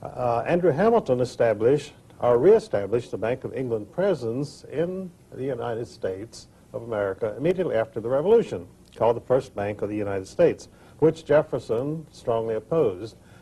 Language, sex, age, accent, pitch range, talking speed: English, male, 60-79, American, 110-150 Hz, 150 wpm